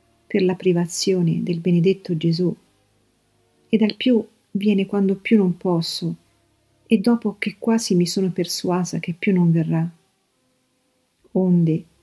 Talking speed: 130 wpm